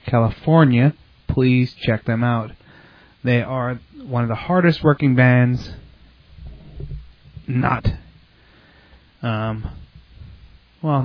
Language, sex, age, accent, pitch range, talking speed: English, male, 30-49, American, 115-140 Hz, 85 wpm